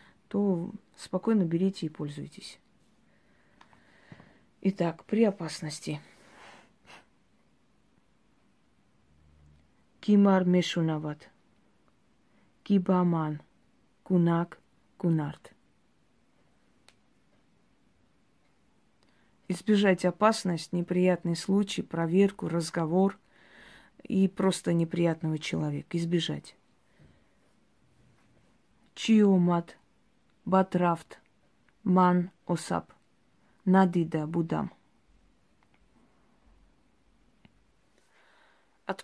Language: Russian